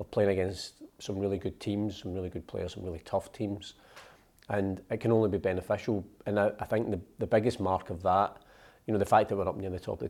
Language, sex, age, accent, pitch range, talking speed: English, male, 40-59, British, 90-105 Hz, 250 wpm